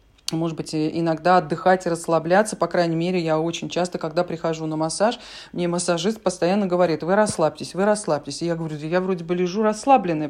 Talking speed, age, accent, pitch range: 185 wpm, 40-59, native, 165-205 Hz